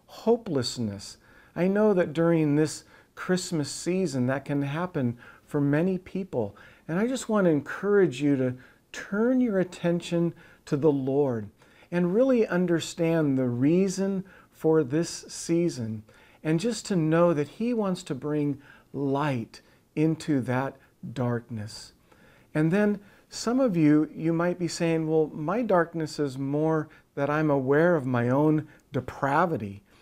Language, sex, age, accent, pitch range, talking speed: English, male, 50-69, American, 130-170 Hz, 140 wpm